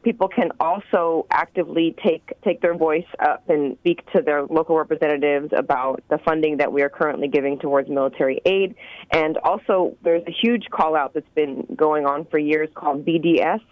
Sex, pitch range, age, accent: female, 155-180 Hz, 30-49, American